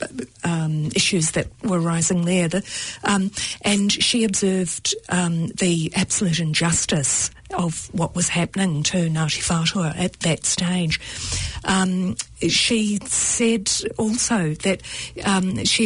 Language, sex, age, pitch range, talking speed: English, female, 50-69, 160-195 Hz, 115 wpm